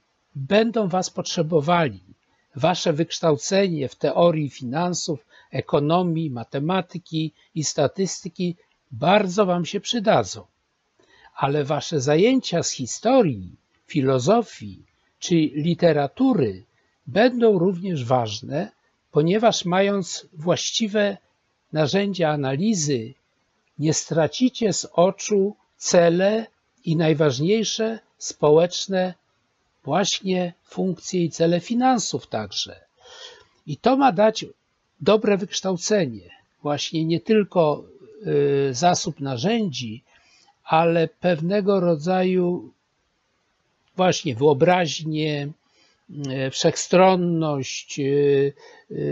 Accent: native